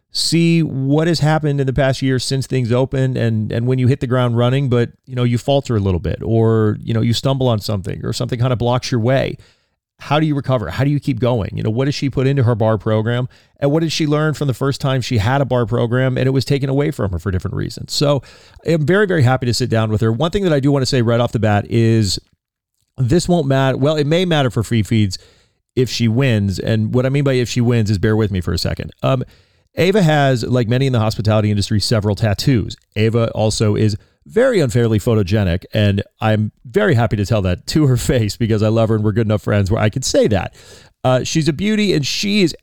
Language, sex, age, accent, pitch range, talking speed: English, male, 30-49, American, 110-135 Hz, 260 wpm